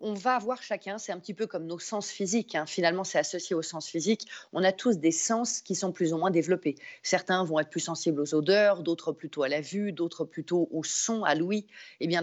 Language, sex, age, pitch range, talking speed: French, female, 40-59, 165-200 Hz, 245 wpm